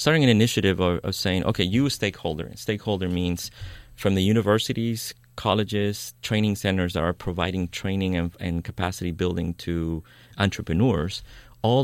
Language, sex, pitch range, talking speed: English, male, 90-115 Hz, 145 wpm